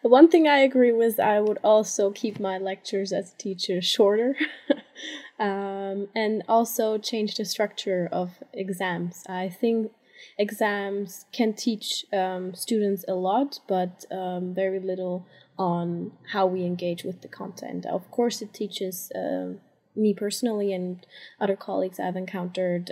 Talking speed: 145 wpm